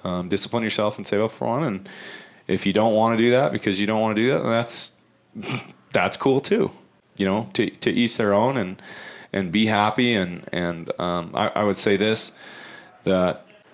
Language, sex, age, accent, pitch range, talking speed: English, male, 30-49, American, 90-110 Hz, 210 wpm